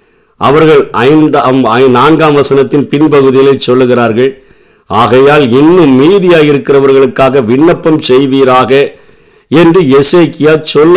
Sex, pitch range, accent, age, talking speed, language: male, 120-145 Hz, native, 50-69, 80 wpm, Tamil